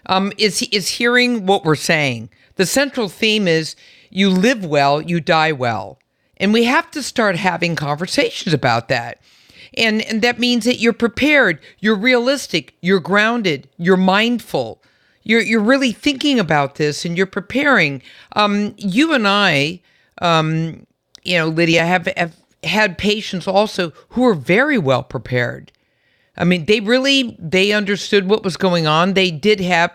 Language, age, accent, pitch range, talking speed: English, 50-69, American, 150-215 Hz, 160 wpm